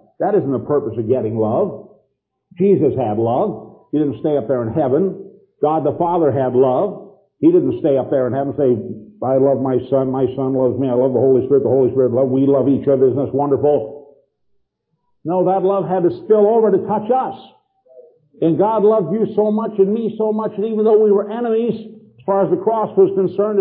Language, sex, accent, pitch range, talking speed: English, male, American, 150-215 Hz, 225 wpm